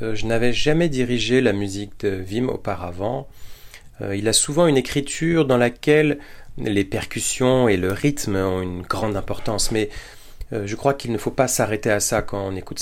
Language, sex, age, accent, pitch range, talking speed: English, male, 30-49, French, 100-120 Hz, 180 wpm